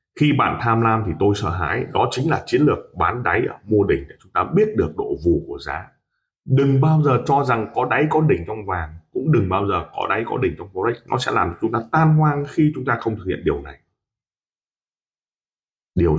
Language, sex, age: Vietnamese, male, 20-39